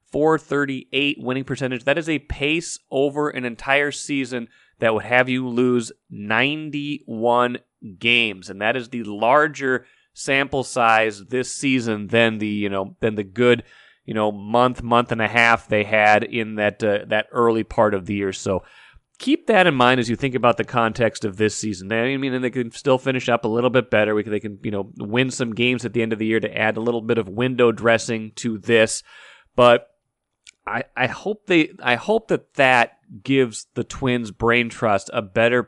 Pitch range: 110-135 Hz